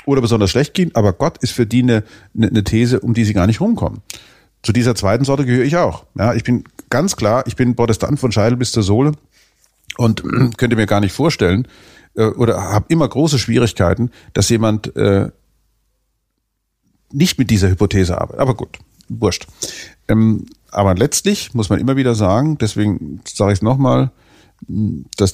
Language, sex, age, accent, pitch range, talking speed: German, male, 40-59, German, 100-125 Hz, 180 wpm